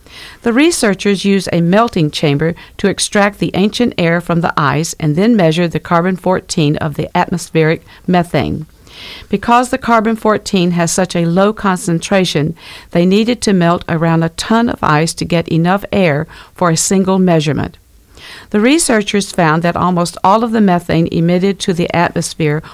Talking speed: 160 wpm